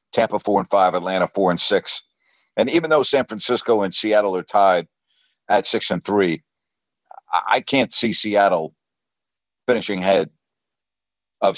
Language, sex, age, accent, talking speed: English, male, 60-79, American, 145 wpm